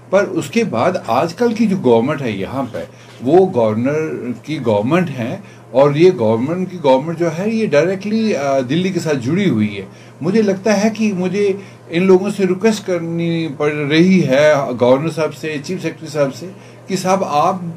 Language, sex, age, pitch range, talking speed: Urdu, male, 60-79, 135-190 Hz, 185 wpm